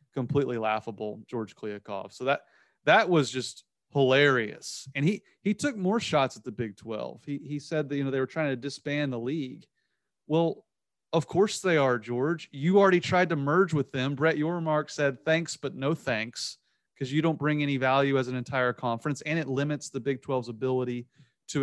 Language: English